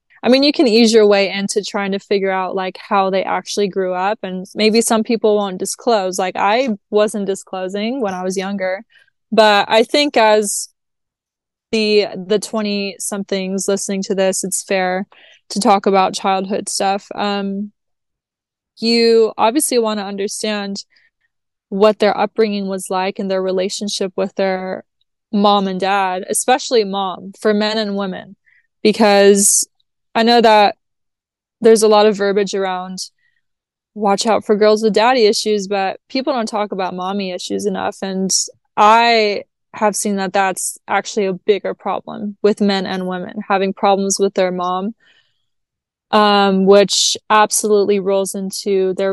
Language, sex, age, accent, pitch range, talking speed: English, female, 20-39, American, 195-215 Hz, 150 wpm